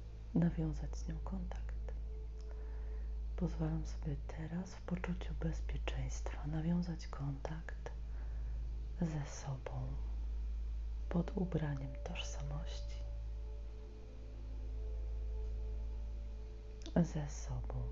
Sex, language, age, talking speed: female, Polish, 30-49, 65 wpm